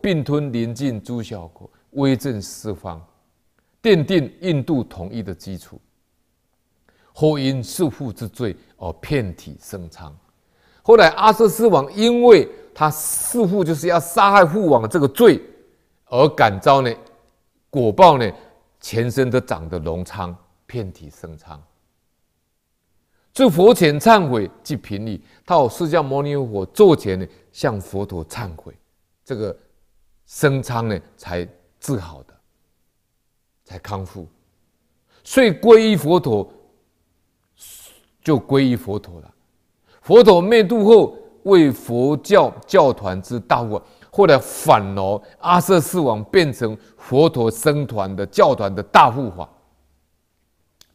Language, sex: Chinese, male